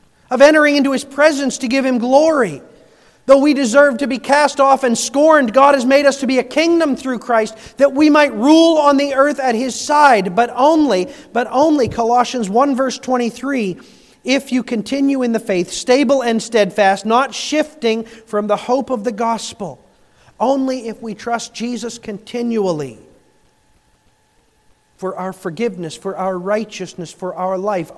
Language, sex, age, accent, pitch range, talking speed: English, male, 40-59, American, 195-270 Hz, 165 wpm